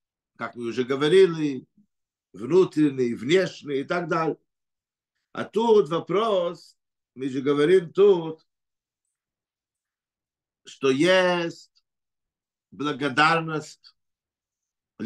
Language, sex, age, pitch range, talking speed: Russian, male, 50-69, 130-170 Hz, 75 wpm